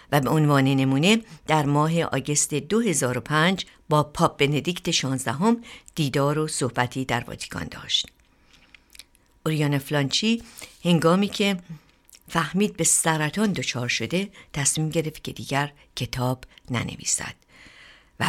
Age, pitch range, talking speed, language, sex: 60-79, 135-170 Hz, 110 wpm, Persian, female